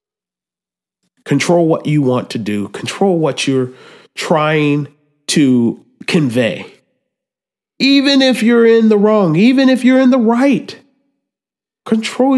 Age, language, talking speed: 30-49, English, 120 wpm